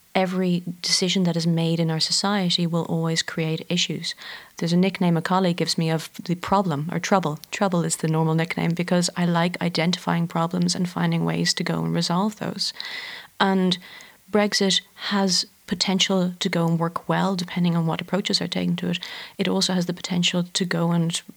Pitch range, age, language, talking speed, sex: 165-190 Hz, 30-49, English, 190 wpm, female